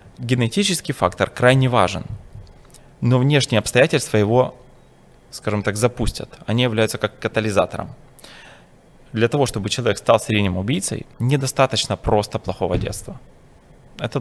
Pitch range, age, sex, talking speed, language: 105-135 Hz, 20-39, male, 115 wpm, Ukrainian